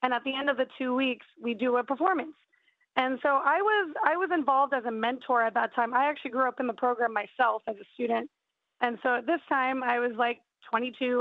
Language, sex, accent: English, female, American